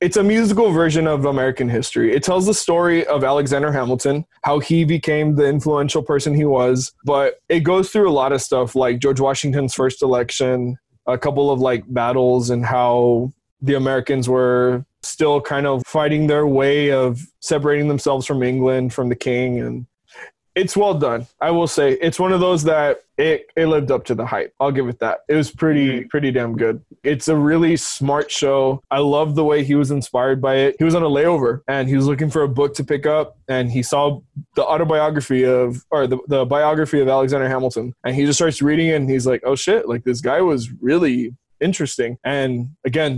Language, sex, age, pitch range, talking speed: English, male, 20-39, 130-155 Hz, 205 wpm